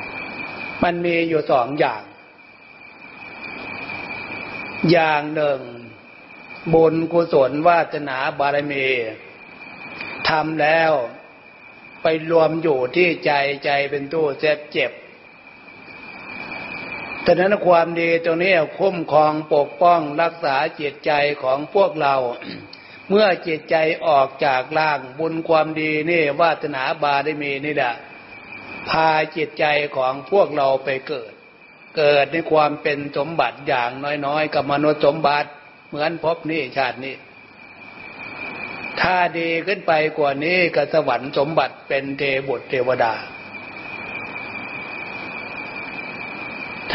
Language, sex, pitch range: Thai, male, 145-165 Hz